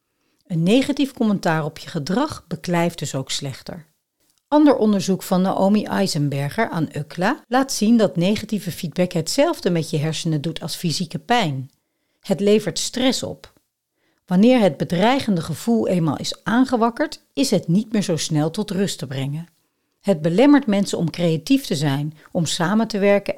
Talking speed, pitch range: 160 wpm, 155-210 Hz